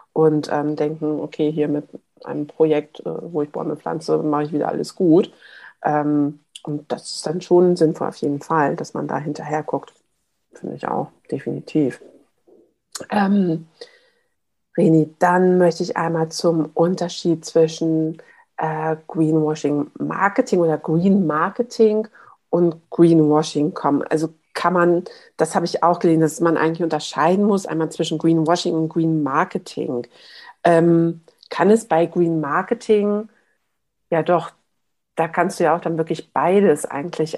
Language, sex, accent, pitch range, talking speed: German, female, German, 155-185 Hz, 145 wpm